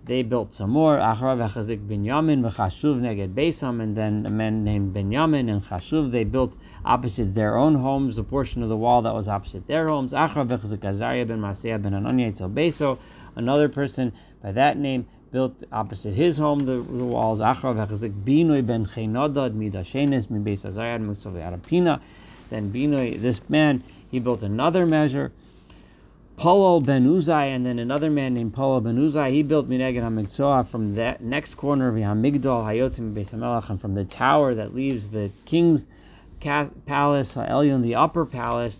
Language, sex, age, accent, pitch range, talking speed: English, male, 40-59, American, 105-135 Hz, 170 wpm